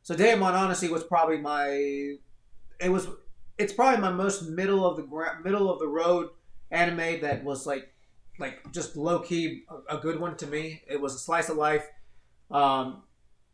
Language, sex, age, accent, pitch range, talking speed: English, male, 30-49, American, 135-170 Hz, 185 wpm